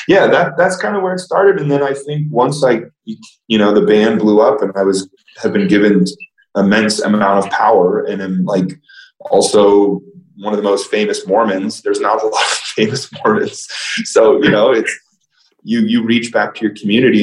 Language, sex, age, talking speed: English, male, 20-39, 200 wpm